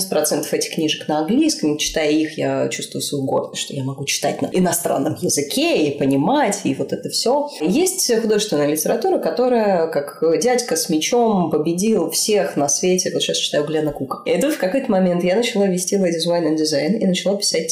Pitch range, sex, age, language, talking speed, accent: 155-230 Hz, female, 20-39, Russian, 185 wpm, native